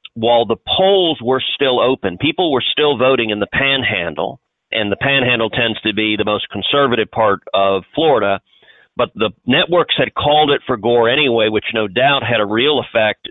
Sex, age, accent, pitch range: male, 50-69, American, 110-150 Hz